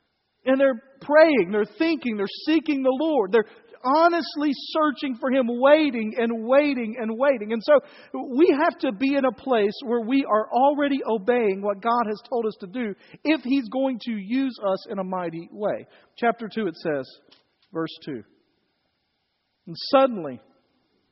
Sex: male